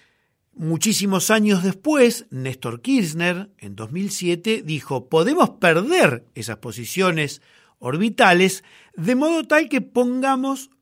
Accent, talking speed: Argentinian, 100 wpm